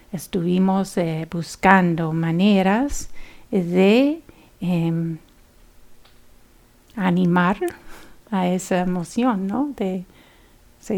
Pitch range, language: 165-210 Hz, English